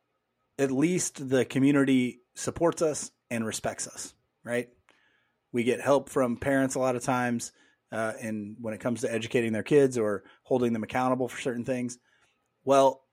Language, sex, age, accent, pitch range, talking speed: English, male, 30-49, American, 115-135 Hz, 165 wpm